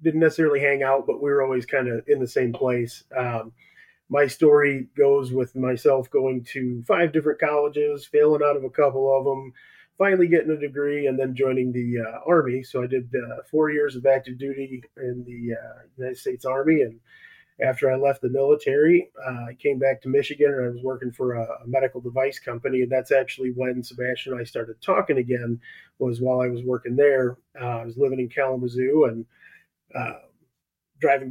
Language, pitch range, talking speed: English, 125-140 Hz, 195 wpm